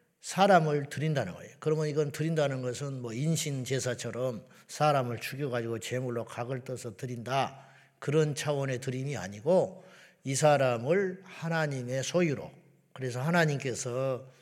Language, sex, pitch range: Korean, male, 125-160 Hz